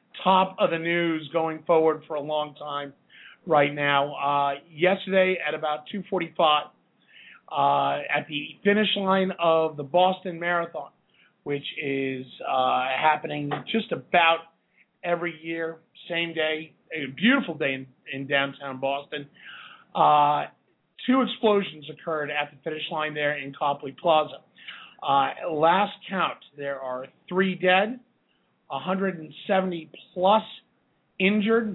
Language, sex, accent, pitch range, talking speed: English, male, American, 150-190 Hz, 125 wpm